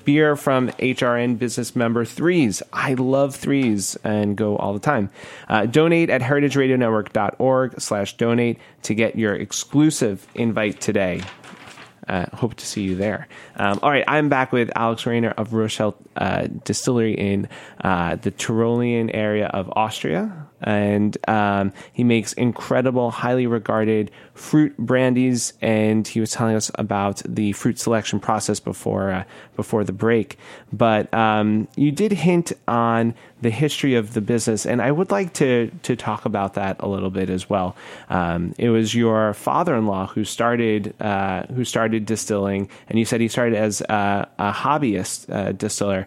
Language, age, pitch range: English, 30-49, 105-125 Hz